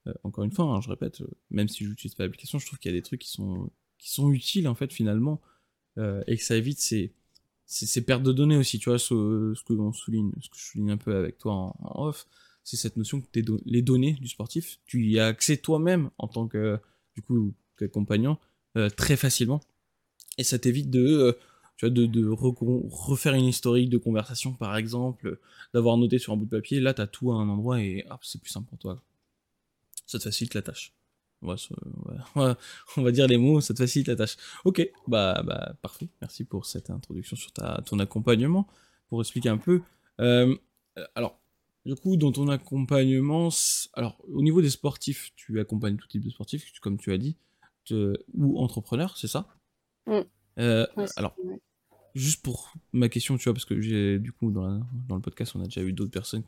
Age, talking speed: 20-39, 220 wpm